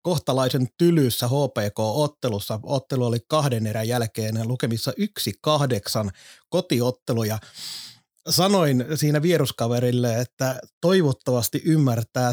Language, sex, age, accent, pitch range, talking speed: Finnish, male, 30-49, native, 125-150 Hz, 90 wpm